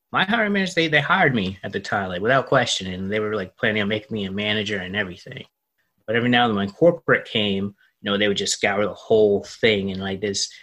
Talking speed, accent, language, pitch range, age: 255 wpm, American, English, 95-120 Hz, 20-39